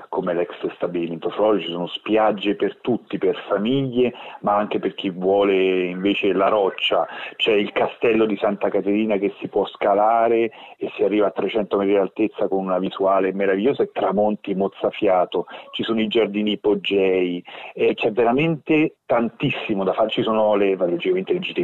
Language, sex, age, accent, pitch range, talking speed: Italian, male, 40-59, native, 95-125 Hz, 155 wpm